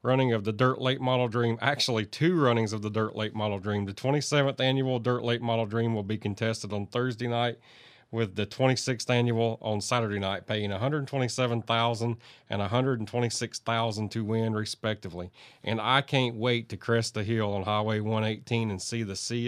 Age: 40-59